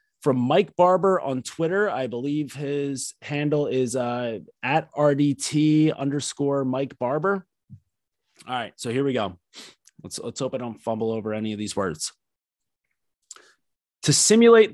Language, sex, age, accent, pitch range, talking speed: English, male, 30-49, American, 115-150 Hz, 145 wpm